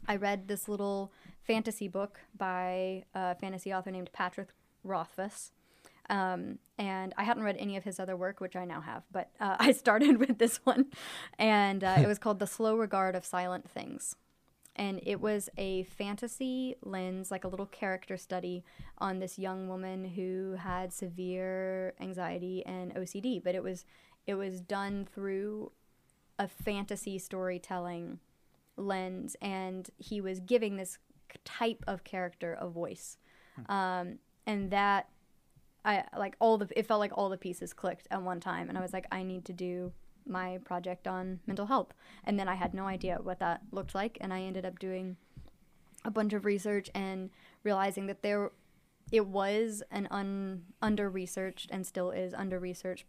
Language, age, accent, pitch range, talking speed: English, 10-29, American, 185-205 Hz, 165 wpm